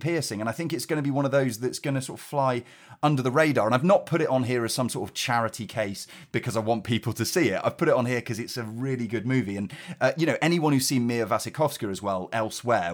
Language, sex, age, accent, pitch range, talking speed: English, male, 30-49, British, 105-140 Hz, 290 wpm